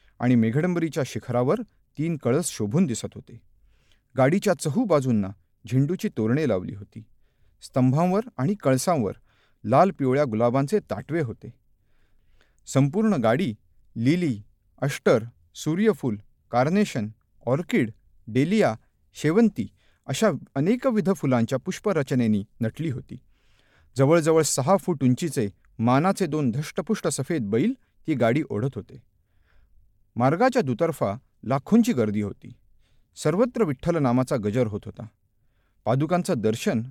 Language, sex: Marathi, male